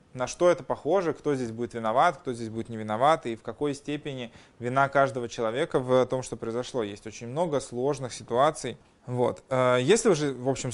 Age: 20-39